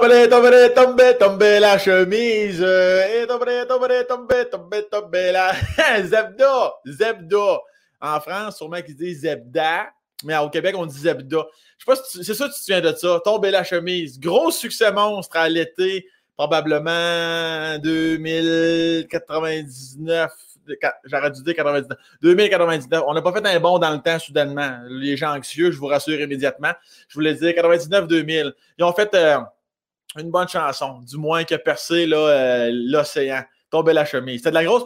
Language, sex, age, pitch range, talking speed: French, male, 20-39, 145-195 Hz, 170 wpm